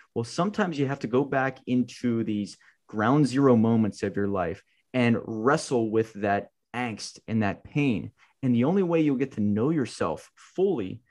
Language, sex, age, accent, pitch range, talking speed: English, male, 20-39, American, 110-145 Hz, 180 wpm